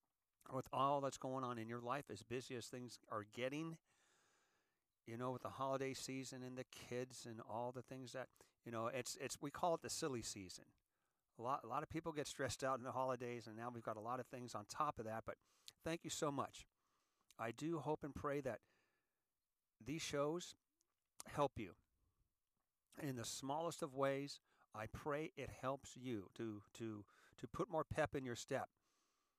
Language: English